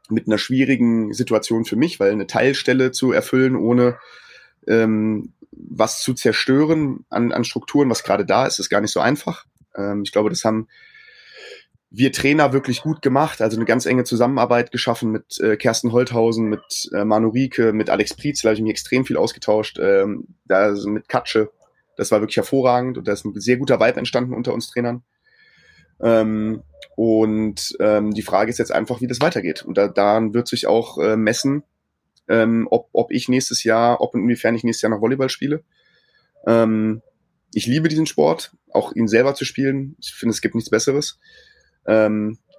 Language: German